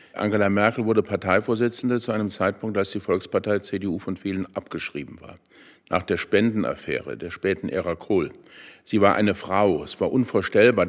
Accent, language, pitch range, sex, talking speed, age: German, German, 95-120 Hz, male, 160 wpm, 50-69